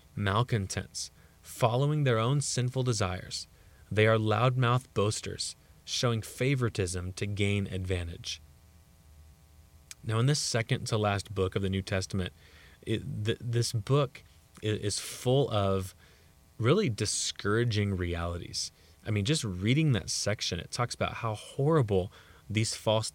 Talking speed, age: 125 wpm, 20-39